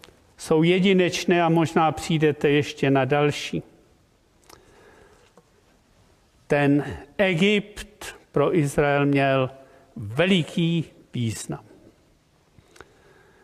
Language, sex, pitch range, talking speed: Czech, male, 150-200 Hz, 65 wpm